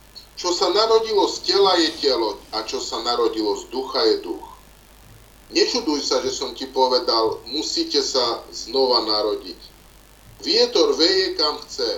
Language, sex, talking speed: Slovak, male, 145 wpm